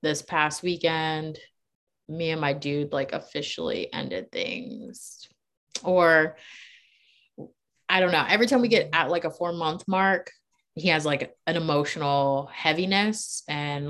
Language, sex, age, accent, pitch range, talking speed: English, female, 20-39, American, 150-195 Hz, 140 wpm